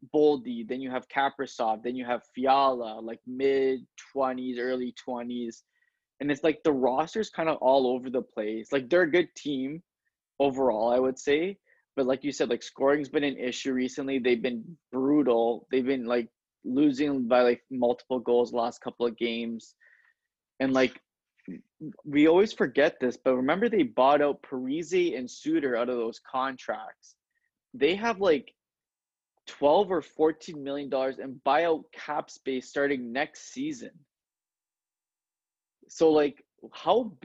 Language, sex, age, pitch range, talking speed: English, male, 20-39, 125-155 Hz, 155 wpm